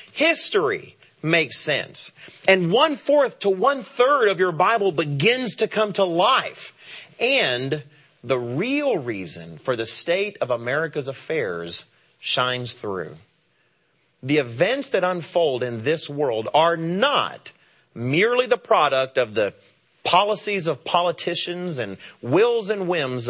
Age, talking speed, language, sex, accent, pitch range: 40-59, 125 wpm, English, male, American, 130-195 Hz